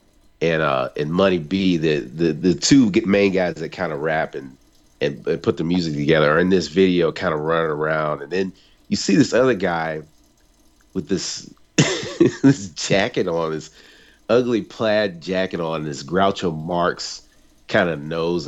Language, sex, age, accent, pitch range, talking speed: English, male, 40-59, American, 80-100 Hz, 170 wpm